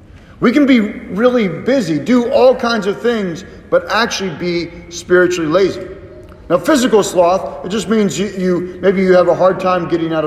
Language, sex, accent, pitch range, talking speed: English, male, American, 140-210 Hz, 180 wpm